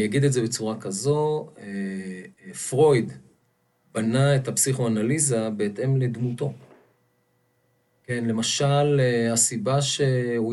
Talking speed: 90 wpm